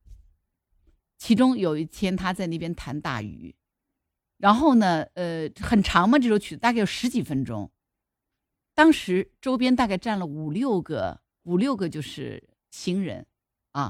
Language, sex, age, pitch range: Chinese, female, 50-69, 160-235 Hz